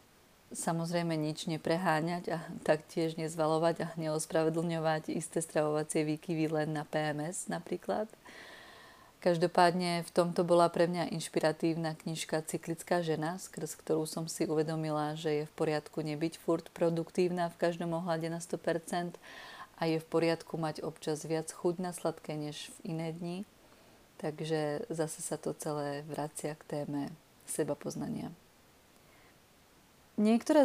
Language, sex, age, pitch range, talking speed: Czech, female, 30-49, 155-175 Hz, 130 wpm